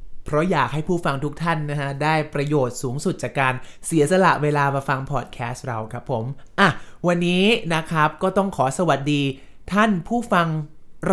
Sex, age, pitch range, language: male, 20-39, 140-180 Hz, Thai